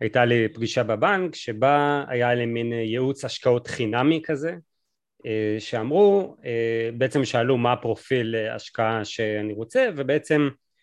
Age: 30-49